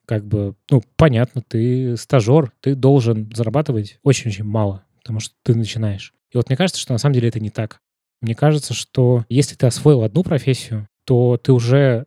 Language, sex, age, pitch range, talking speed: Russian, male, 20-39, 115-135 Hz, 185 wpm